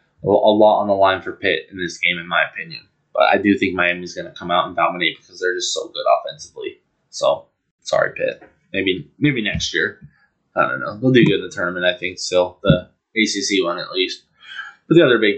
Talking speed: 225 wpm